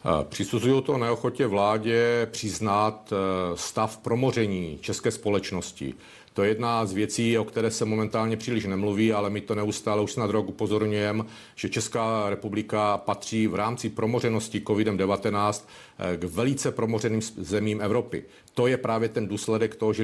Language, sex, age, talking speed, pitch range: Czech, male, 40-59, 145 wpm, 105-115 Hz